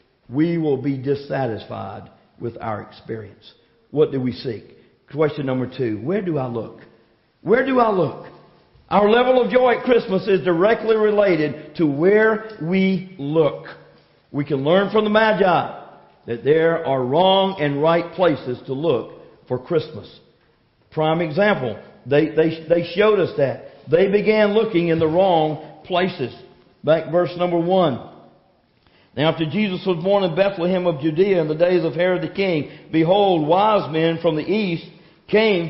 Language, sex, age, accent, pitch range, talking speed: English, male, 50-69, American, 145-190 Hz, 160 wpm